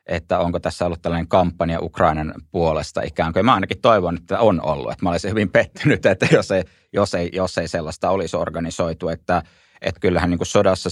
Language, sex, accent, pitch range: Finnish, male, native, 80-90 Hz